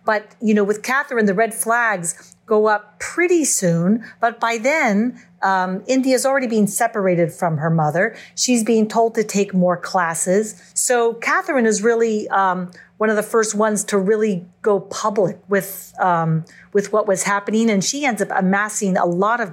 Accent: American